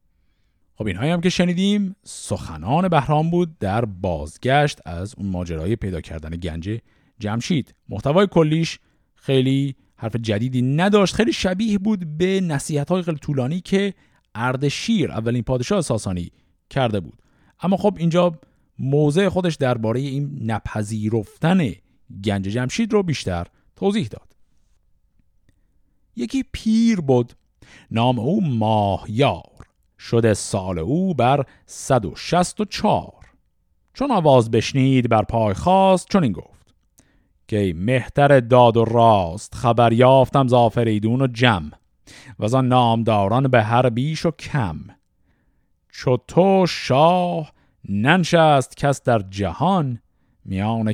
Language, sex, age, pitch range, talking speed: Persian, male, 50-69, 100-150 Hz, 115 wpm